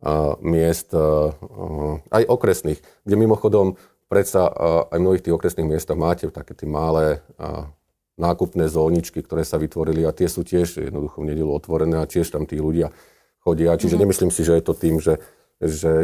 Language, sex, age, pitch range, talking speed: Slovak, male, 40-59, 75-85 Hz, 170 wpm